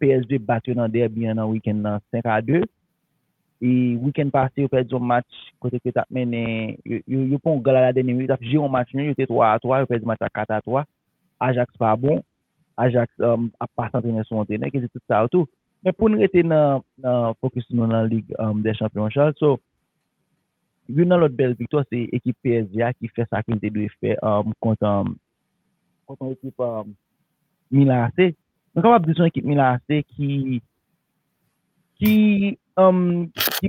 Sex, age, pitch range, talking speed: male, 30-49, 110-140 Hz, 195 wpm